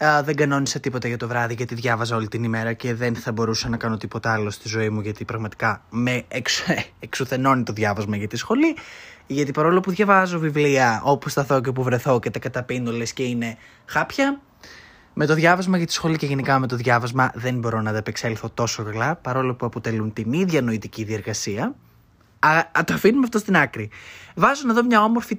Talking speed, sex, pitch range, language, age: 205 wpm, male, 120-175 Hz, Greek, 20-39